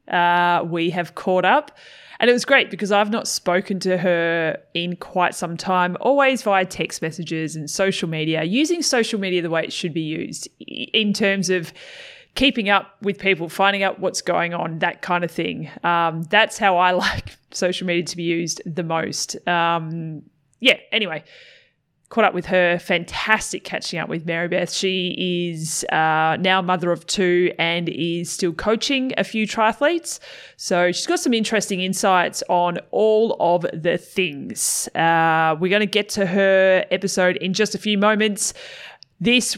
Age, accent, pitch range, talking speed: 20-39, Australian, 175-205 Hz, 175 wpm